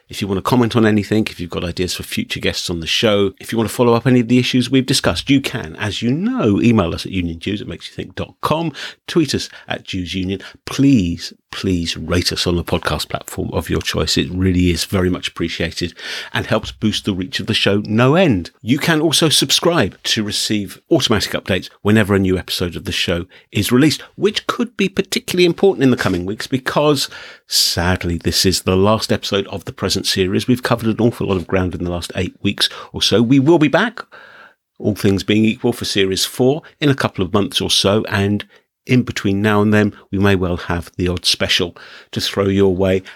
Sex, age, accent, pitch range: male, 50-69, British, 90-125 Hz